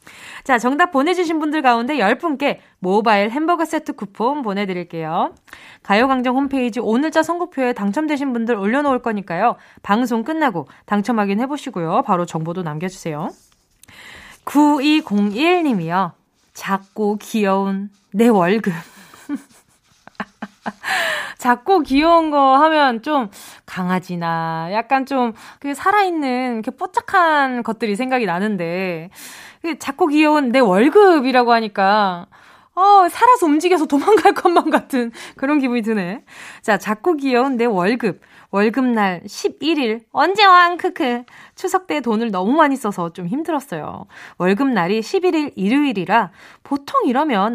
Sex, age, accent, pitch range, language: female, 20-39, native, 210-310 Hz, Korean